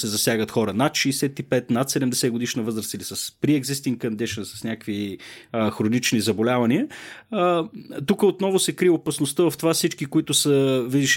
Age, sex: 30-49, male